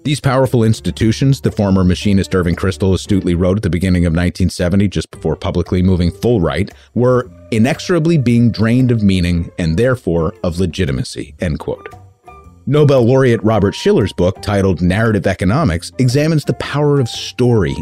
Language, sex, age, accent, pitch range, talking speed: English, male, 30-49, American, 90-120 Hz, 155 wpm